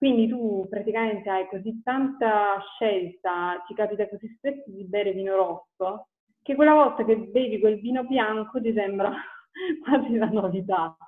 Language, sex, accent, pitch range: Italian, female, native, 190-230 Hz